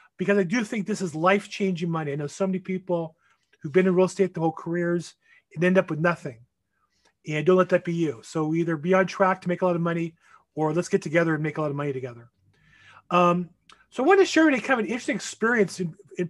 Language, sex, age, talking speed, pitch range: English, male, 30-49, 250 wpm, 170-215 Hz